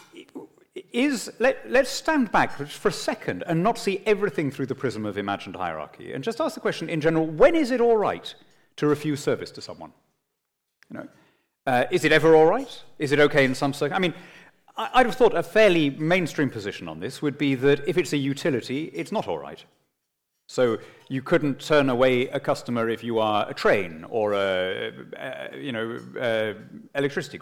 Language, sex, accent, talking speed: English, male, British, 195 wpm